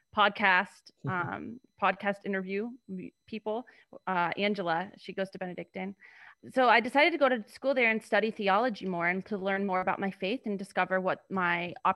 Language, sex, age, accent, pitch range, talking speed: English, female, 20-39, American, 190-220 Hz, 170 wpm